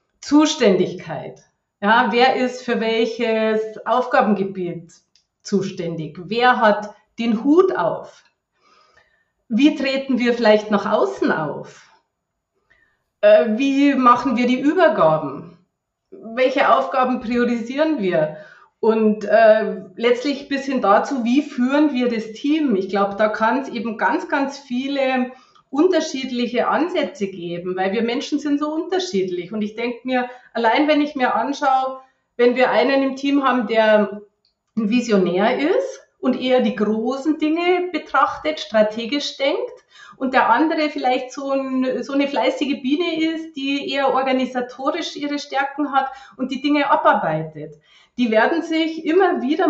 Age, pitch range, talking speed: 30-49, 225-295 Hz, 135 wpm